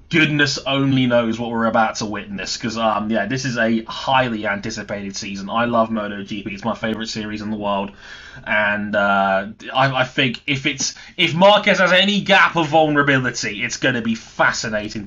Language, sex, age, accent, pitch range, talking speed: English, male, 20-39, British, 110-150 Hz, 180 wpm